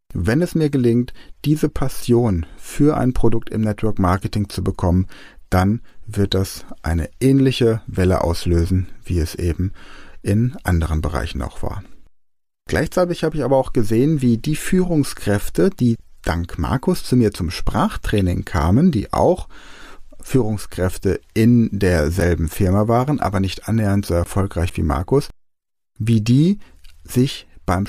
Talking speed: 140 wpm